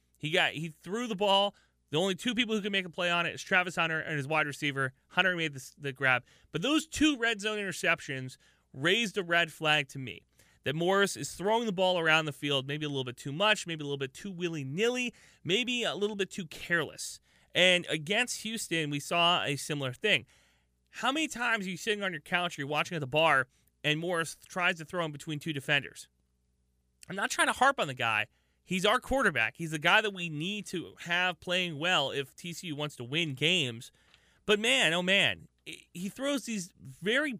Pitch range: 140-195 Hz